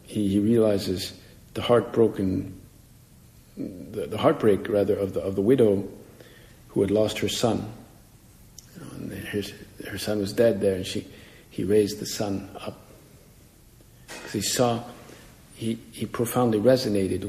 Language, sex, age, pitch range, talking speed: English, male, 50-69, 100-115 Hz, 140 wpm